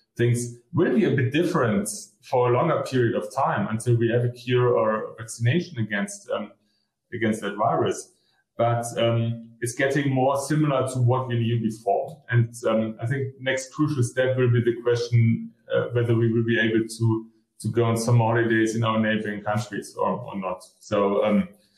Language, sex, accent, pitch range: English, male, German, 115-135 Hz